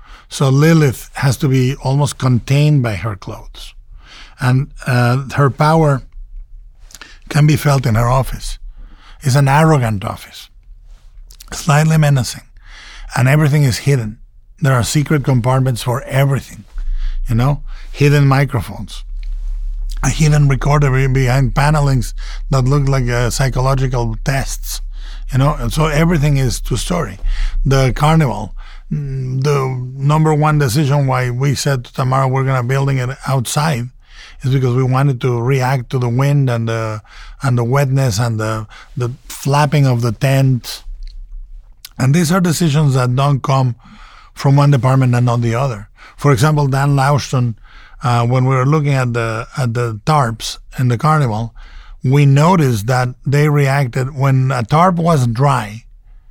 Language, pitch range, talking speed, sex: English, 120-145 Hz, 145 wpm, male